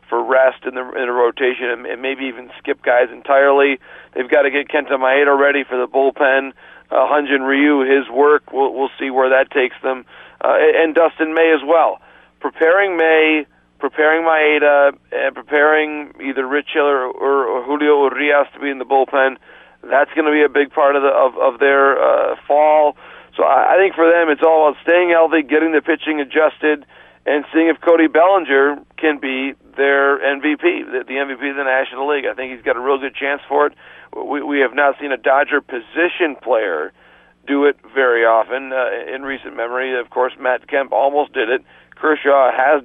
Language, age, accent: English, 40-59, American